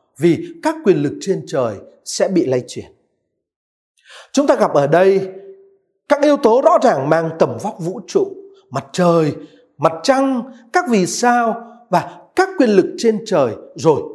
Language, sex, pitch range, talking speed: Vietnamese, male, 190-295 Hz, 165 wpm